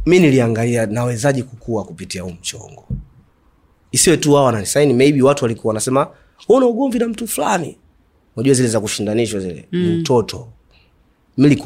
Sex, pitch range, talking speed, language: male, 100-140 Hz, 140 wpm, Swahili